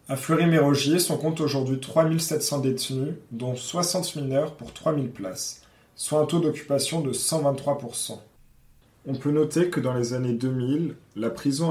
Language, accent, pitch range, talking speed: French, French, 130-155 Hz, 150 wpm